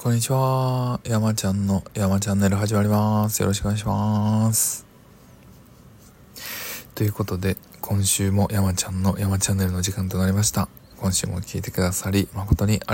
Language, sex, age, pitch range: Japanese, male, 20-39, 95-110 Hz